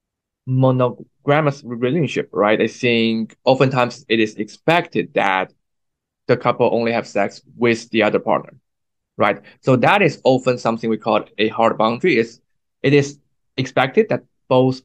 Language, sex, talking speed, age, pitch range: English, male, 145 wpm, 20-39, 115-135 Hz